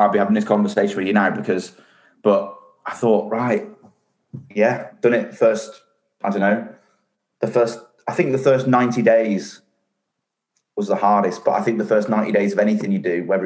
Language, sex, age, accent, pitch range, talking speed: English, male, 30-49, British, 95-120 Hz, 195 wpm